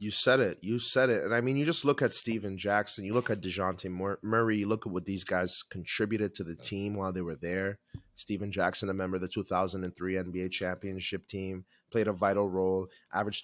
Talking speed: 220 wpm